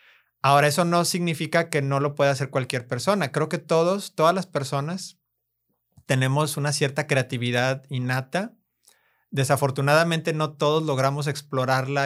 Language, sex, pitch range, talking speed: Spanish, male, 125-155 Hz, 135 wpm